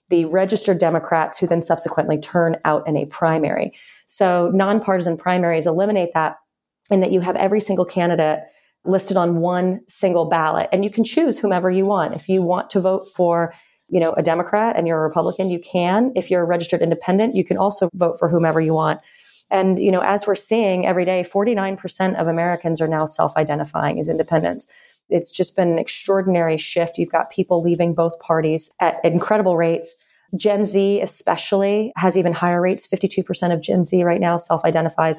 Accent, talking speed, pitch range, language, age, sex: American, 185 wpm, 165-195 Hz, English, 30-49, female